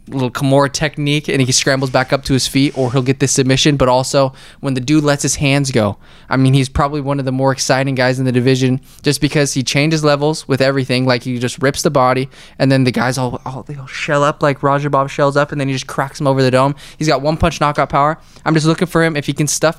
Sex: male